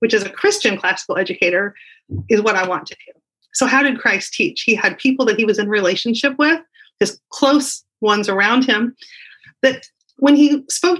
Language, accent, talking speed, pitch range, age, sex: English, American, 190 wpm, 220-290 Hz, 30-49, female